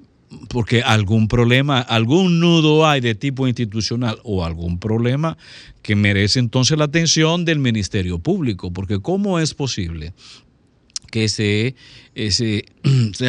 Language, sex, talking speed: Spanish, male, 120 wpm